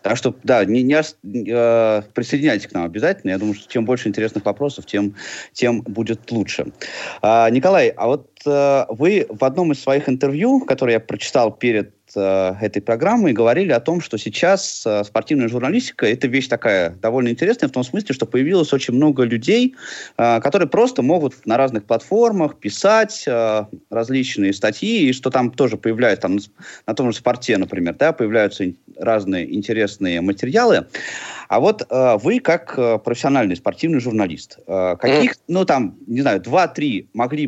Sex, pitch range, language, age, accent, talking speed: male, 110-145 Hz, Russian, 30-49, native, 155 wpm